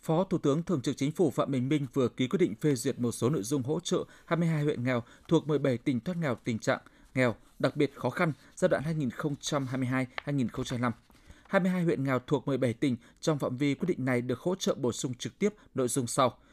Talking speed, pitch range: 225 wpm, 125-160 Hz